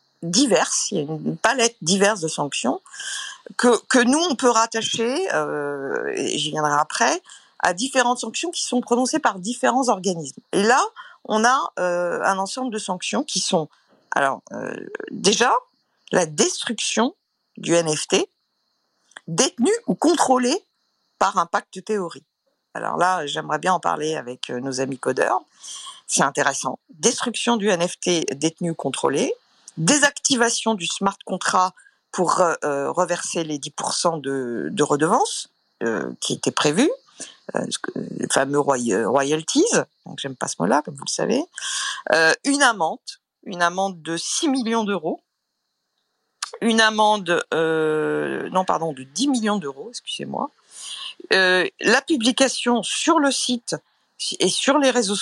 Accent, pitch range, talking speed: French, 160-260 Hz, 140 wpm